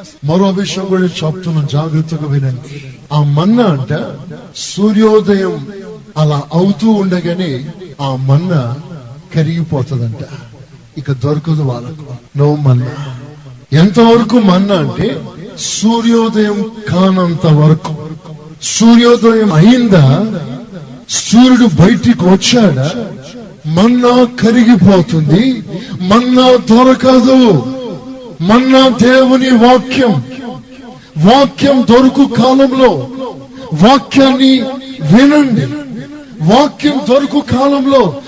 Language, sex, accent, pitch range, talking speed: Telugu, male, native, 155-255 Hz, 70 wpm